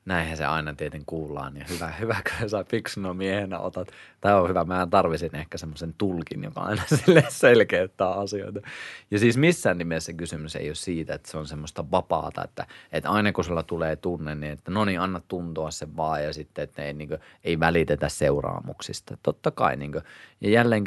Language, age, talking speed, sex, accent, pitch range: Finnish, 30-49, 195 wpm, male, native, 80-95 Hz